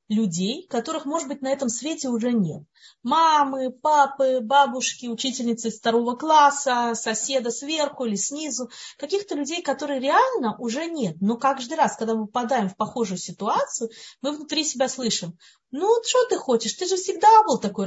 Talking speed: 160 wpm